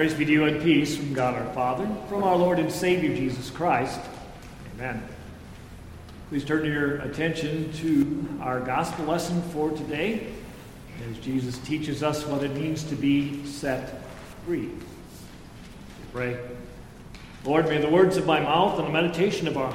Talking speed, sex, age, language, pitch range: 160 wpm, male, 40-59, English, 135-165 Hz